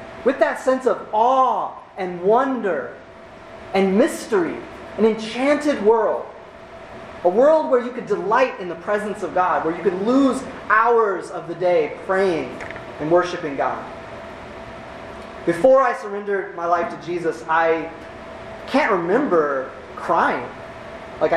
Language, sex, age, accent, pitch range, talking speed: English, male, 30-49, American, 175-250 Hz, 130 wpm